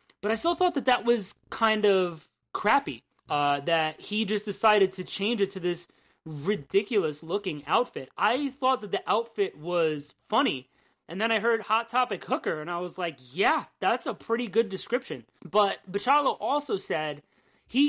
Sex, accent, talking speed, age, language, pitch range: male, American, 170 wpm, 30-49, English, 175-230 Hz